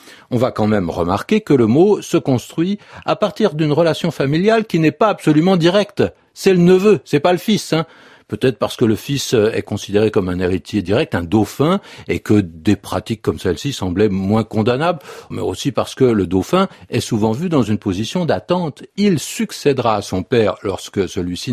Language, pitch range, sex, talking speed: French, 105-170 Hz, male, 195 wpm